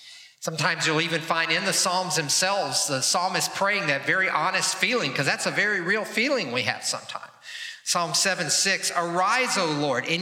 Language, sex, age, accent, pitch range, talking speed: English, male, 50-69, American, 170-245 Hz, 180 wpm